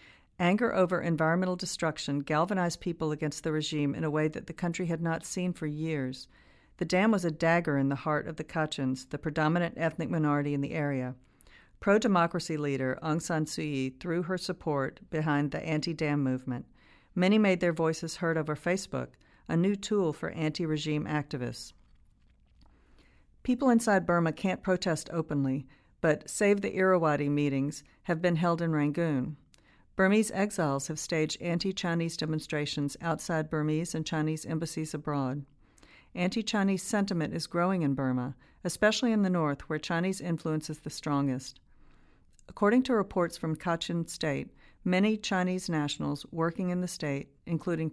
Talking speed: 150 wpm